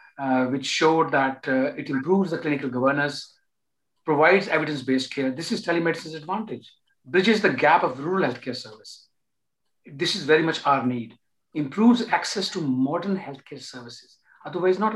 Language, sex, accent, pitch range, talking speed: English, male, Indian, 140-195 Hz, 155 wpm